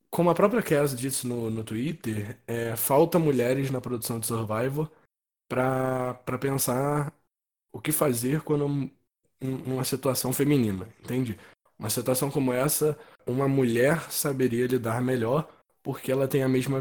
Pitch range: 110-135 Hz